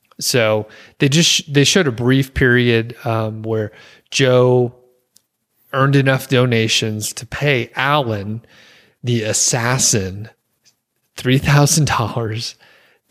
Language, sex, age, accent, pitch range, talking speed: English, male, 30-49, American, 115-140 Hz, 90 wpm